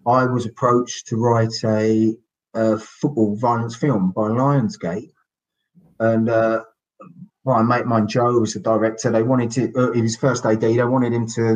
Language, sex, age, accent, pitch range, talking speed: English, male, 30-49, British, 110-130 Hz, 180 wpm